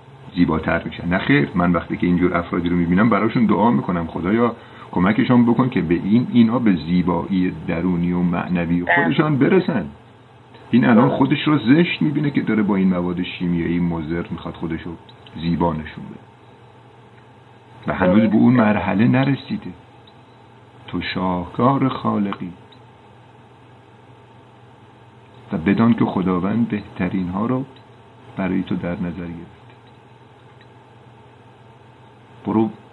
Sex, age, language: male, 50-69, Persian